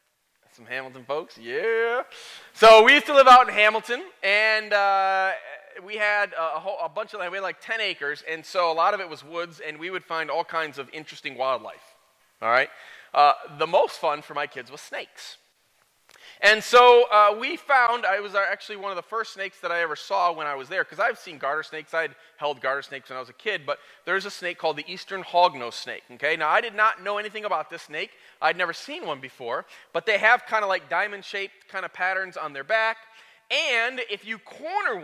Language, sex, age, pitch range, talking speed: English, male, 30-49, 175-230 Hz, 225 wpm